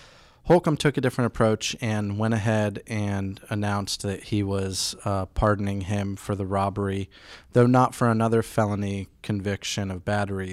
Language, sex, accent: English, male, American